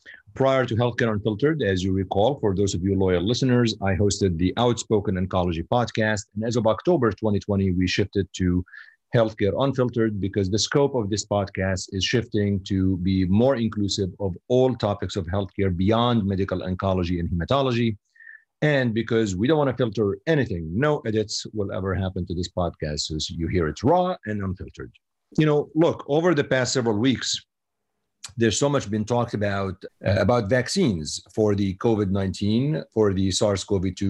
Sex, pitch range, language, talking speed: male, 95-120 Hz, English, 170 wpm